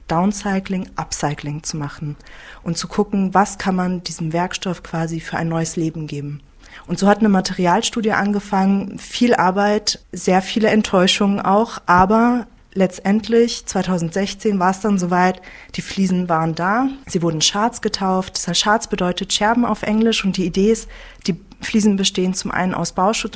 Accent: German